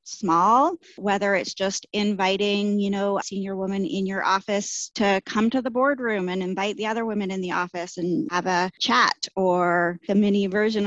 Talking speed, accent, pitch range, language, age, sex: 190 wpm, American, 180-215 Hz, English, 20-39, female